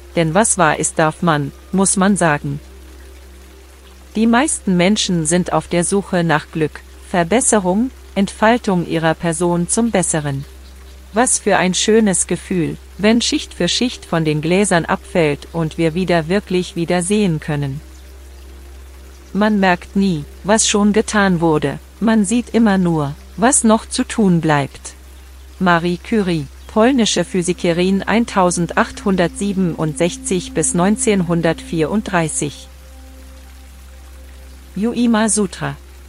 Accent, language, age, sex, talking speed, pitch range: German, German, 40-59, female, 115 wpm, 145-200 Hz